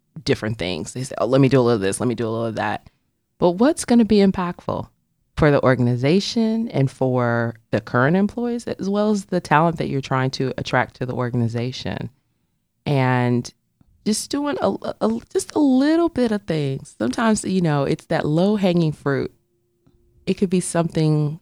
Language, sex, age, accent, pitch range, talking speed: English, female, 20-39, American, 120-150 Hz, 185 wpm